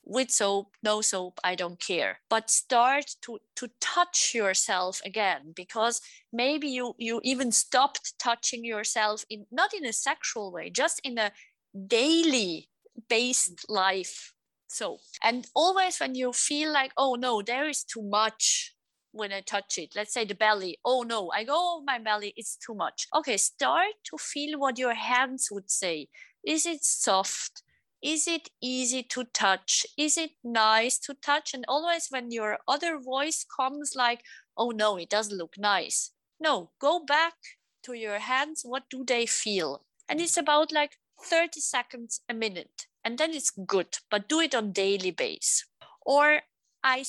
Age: 30-49